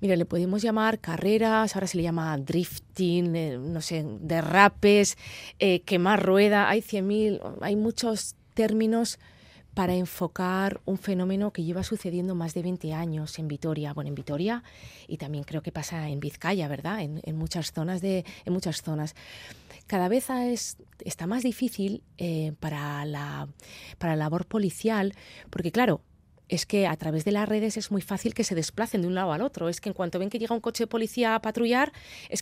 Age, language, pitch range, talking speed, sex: 20-39, Spanish, 165-210 Hz, 185 wpm, female